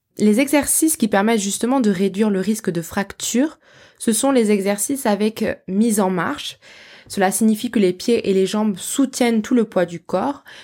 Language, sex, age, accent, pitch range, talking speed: French, female, 20-39, French, 185-235 Hz, 185 wpm